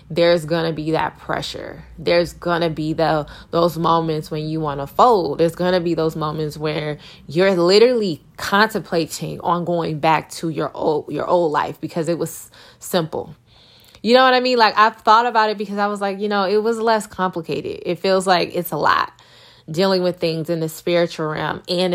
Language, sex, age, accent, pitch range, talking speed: English, female, 20-39, American, 155-185 Hz, 205 wpm